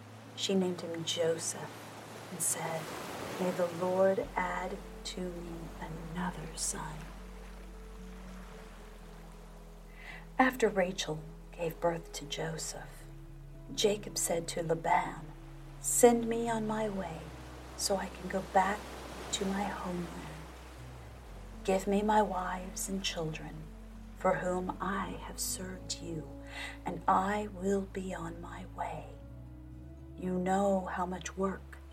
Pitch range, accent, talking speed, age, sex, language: 125-190 Hz, American, 115 wpm, 40-59, female, English